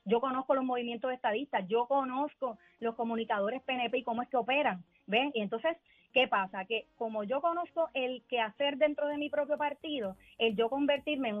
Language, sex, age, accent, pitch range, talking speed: Spanish, female, 30-49, American, 220-290 Hz, 185 wpm